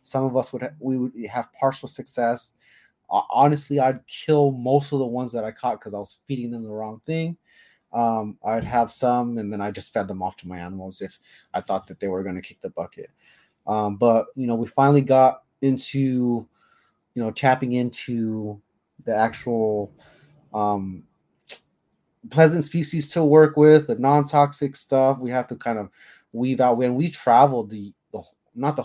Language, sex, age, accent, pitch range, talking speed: English, male, 30-49, American, 110-135 Hz, 185 wpm